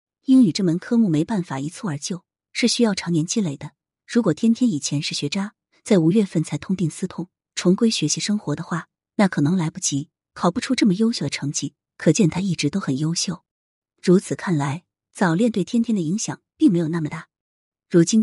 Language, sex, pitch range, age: Chinese, female, 155-220 Hz, 30-49